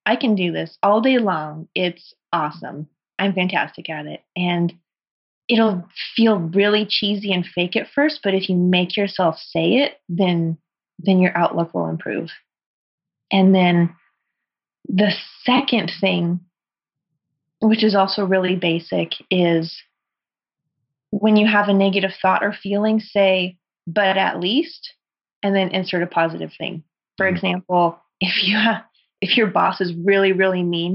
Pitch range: 175-215 Hz